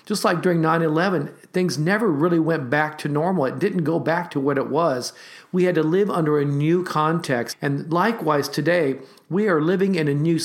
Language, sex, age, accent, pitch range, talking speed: English, male, 50-69, American, 125-160 Hz, 205 wpm